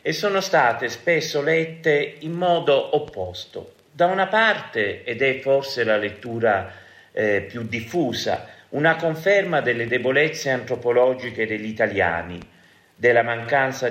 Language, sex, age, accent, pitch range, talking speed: Italian, male, 50-69, native, 105-150 Hz, 120 wpm